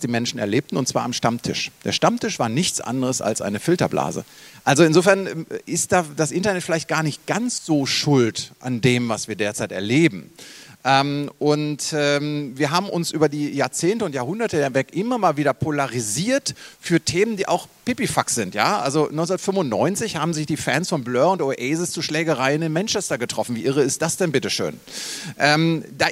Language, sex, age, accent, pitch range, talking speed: English, male, 40-59, German, 140-185 Hz, 175 wpm